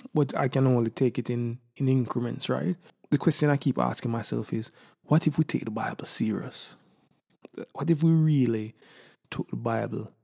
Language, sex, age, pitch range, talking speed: English, male, 20-39, 115-145 Hz, 180 wpm